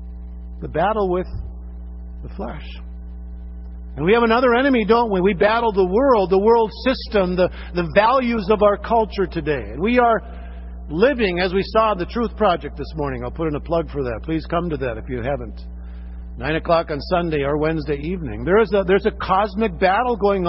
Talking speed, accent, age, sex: 185 wpm, American, 50-69, male